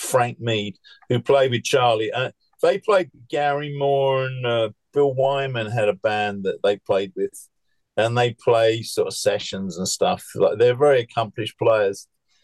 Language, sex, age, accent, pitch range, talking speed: English, male, 50-69, British, 120-175 Hz, 170 wpm